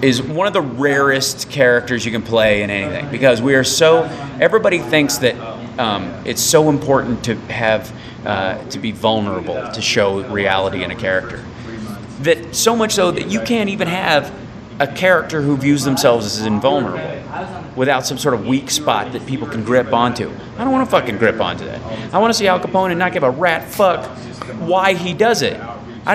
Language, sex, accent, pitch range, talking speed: English, male, American, 115-175 Hz, 195 wpm